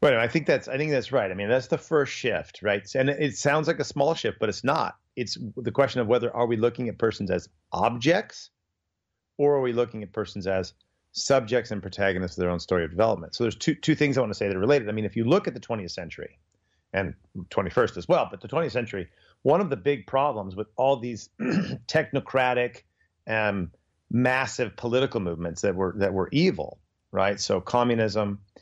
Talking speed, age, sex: 215 wpm, 40-59, male